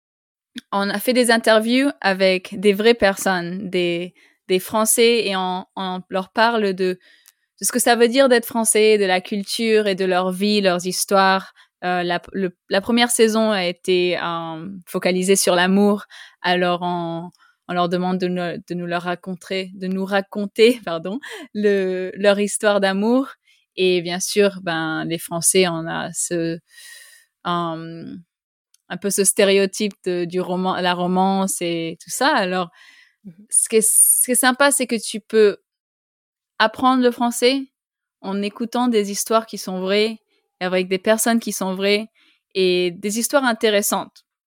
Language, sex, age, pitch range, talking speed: French, female, 20-39, 180-220 Hz, 155 wpm